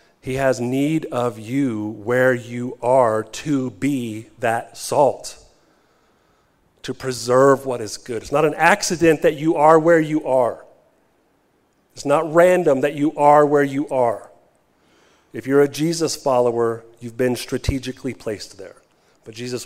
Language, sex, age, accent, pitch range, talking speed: English, male, 40-59, American, 115-160 Hz, 145 wpm